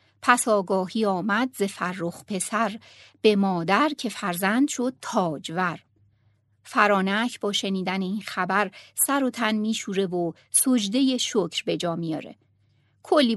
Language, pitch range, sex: Persian, 180-240 Hz, female